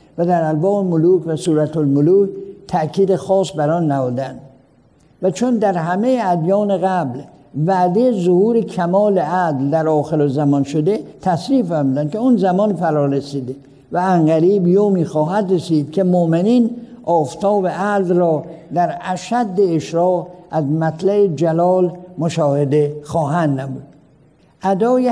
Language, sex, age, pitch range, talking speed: Persian, male, 60-79, 155-195 Hz, 120 wpm